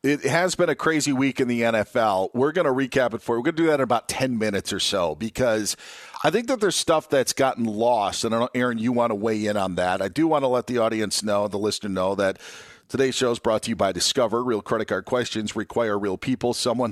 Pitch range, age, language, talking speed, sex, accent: 110-140 Hz, 40-59, English, 265 wpm, male, American